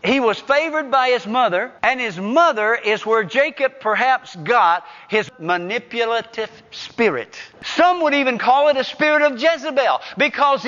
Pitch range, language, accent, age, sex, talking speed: 185-260 Hz, English, American, 50-69, male, 150 wpm